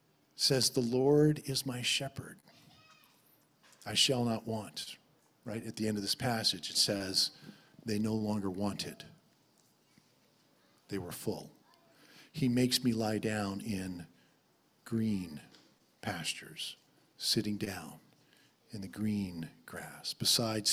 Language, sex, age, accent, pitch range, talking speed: English, male, 50-69, American, 115-170 Hz, 120 wpm